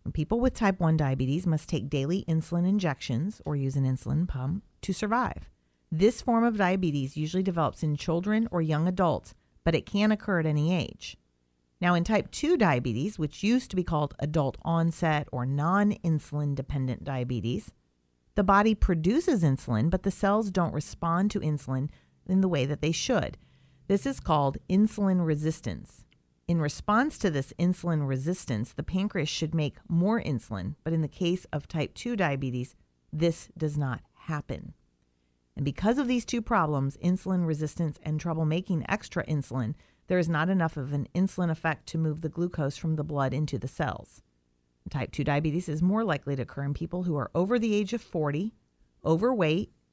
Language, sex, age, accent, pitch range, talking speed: English, female, 40-59, American, 140-185 Hz, 175 wpm